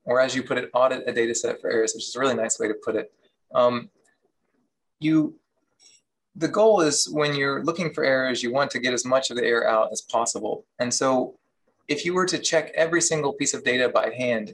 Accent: American